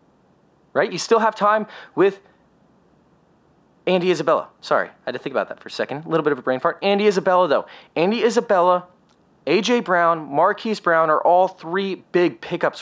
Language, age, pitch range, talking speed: English, 30-49, 180-225 Hz, 185 wpm